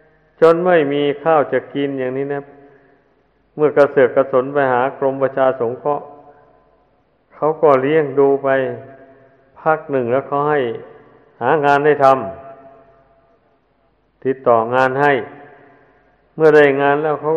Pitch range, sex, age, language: 130-150 Hz, male, 60-79, Thai